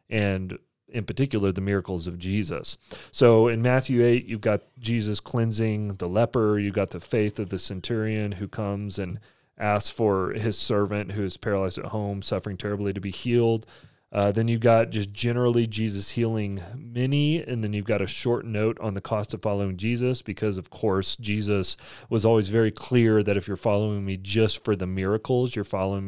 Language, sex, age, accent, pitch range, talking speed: English, male, 30-49, American, 100-120 Hz, 190 wpm